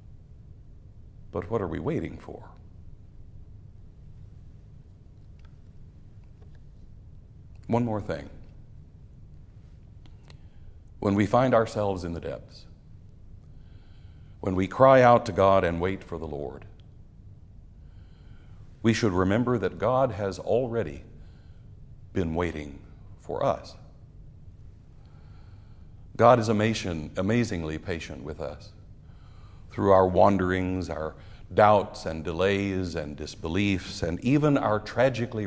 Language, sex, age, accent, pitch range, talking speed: English, male, 60-79, American, 85-110 Hz, 95 wpm